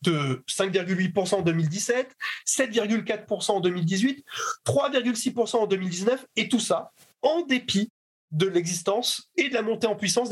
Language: French